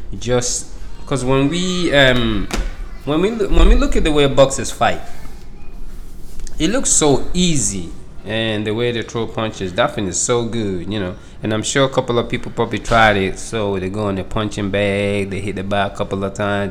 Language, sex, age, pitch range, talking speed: English, male, 20-39, 95-125 Hz, 205 wpm